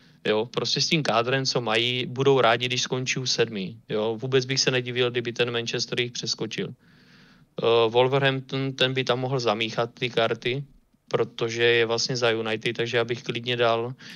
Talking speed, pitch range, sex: 165 wpm, 120-135 Hz, male